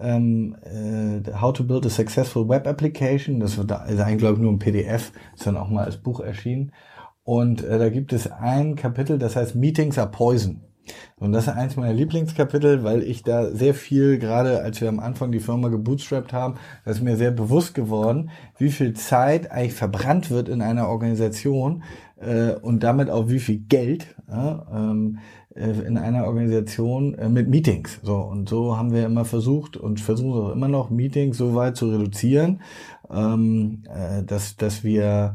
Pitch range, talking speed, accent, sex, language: 110-130 Hz, 175 wpm, German, male, German